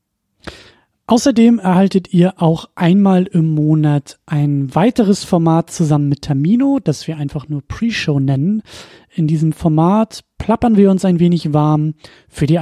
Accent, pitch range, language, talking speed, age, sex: German, 150-200 Hz, German, 145 wpm, 30-49, male